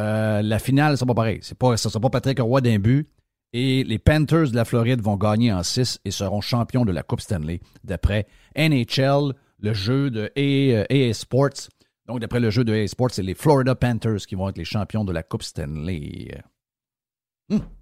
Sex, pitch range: male, 105-135 Hz